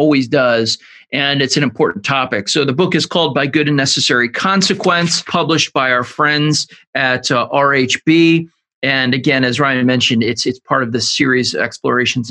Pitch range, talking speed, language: 130-170 Hz, 175 wpm, English